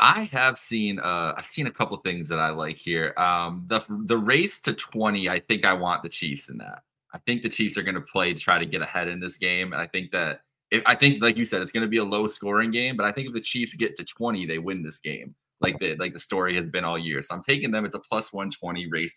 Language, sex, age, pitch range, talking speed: English, male, 20-39, 95-120 Hz, 285 wpm